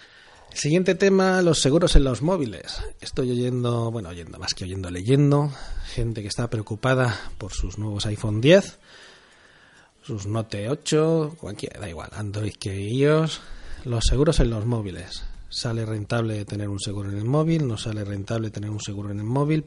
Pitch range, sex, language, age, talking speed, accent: 100-130 Hz, male, Spanish, 30-49, 170 wpm, Spanish